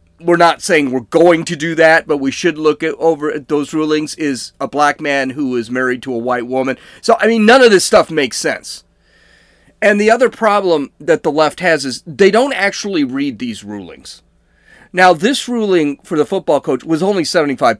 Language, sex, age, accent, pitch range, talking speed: English, male, 40-59, American, 145-205 Hz, 210 wpm